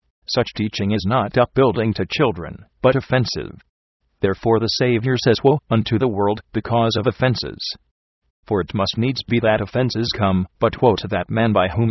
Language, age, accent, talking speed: English, 40-59, American, 175 wpm